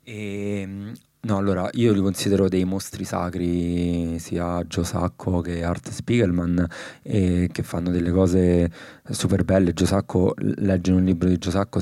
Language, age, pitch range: German, 20-39, 90-100 Hz